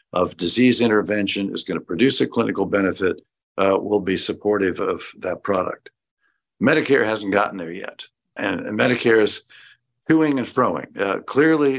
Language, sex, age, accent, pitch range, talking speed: English, male, 60-79, American, 95-125 Hz, 160 wpm